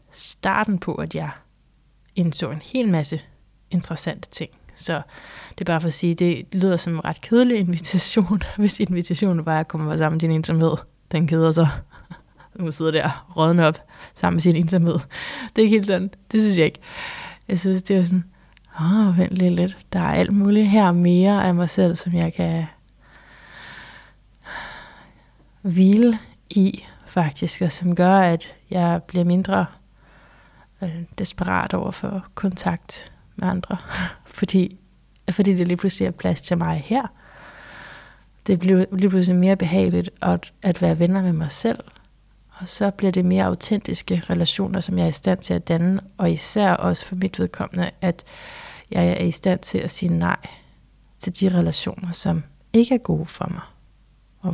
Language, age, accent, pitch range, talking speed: Danish, 20-39, native, 165-190 Hz, 170 wpm